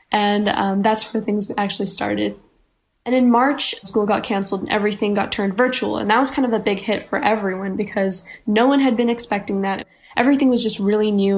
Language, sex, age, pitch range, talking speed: English, female, 10-29, 195-220 Hz, 210 wpm